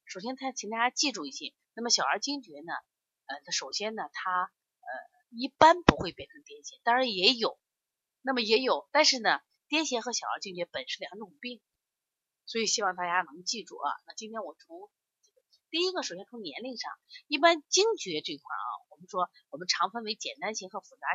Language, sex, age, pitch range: Chinese, female, 30-49, 195-310 Hz